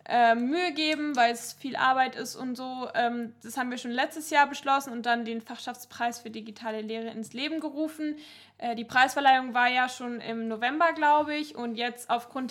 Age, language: 20-39, German